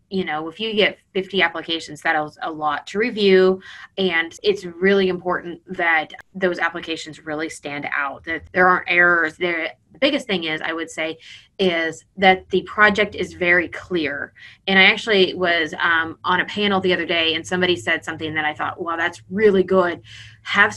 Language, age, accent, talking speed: English, 20-39, American, 190 wpm